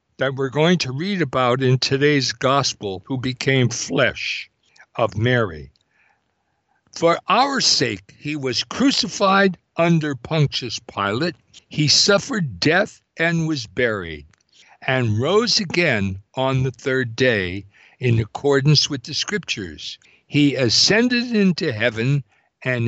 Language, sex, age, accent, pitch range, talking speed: English, male, 60-79, American, 115-175 Hz, 120 wpm